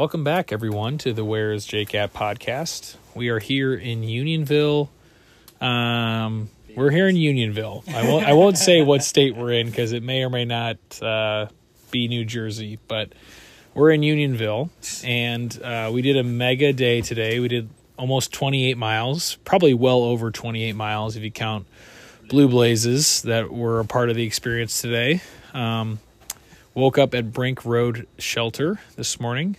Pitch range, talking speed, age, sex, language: 110-130 Hz, 165 wpm, 20-39, male, English